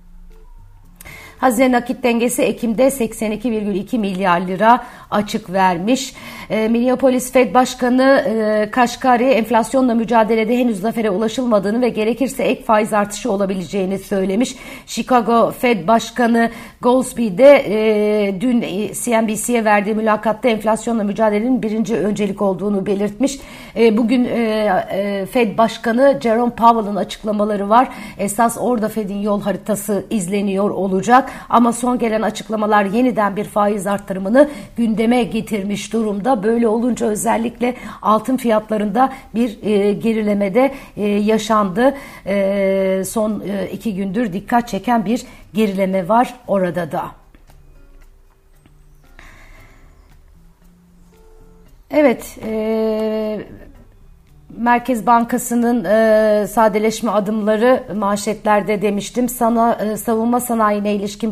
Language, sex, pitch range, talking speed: Turkish, female, 205-240 Hz, 100 wpm